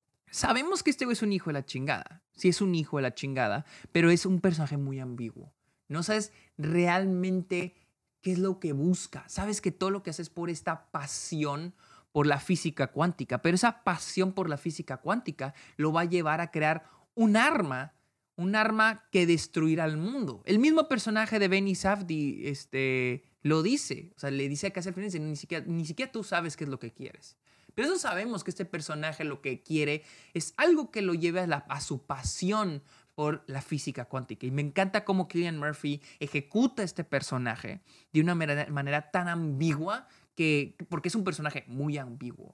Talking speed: 195 wpm